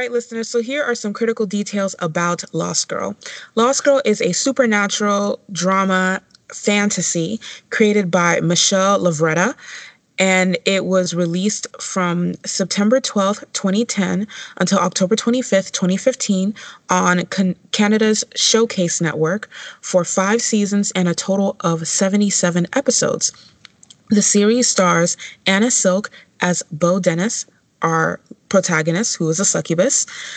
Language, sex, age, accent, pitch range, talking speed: English, female, 20-39, American, 175-220 Hz, 120 wpm